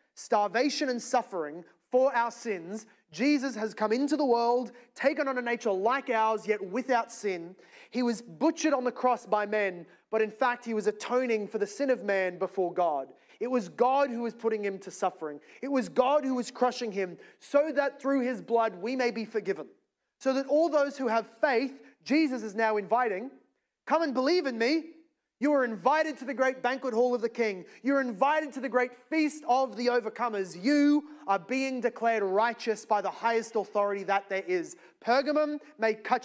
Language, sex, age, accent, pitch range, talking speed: English, male, 30-49, Australian, 210-265 Hz, 195 wpm